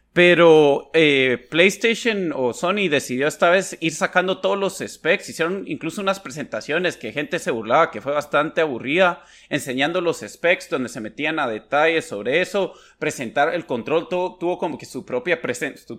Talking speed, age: 175 wpm, 30-49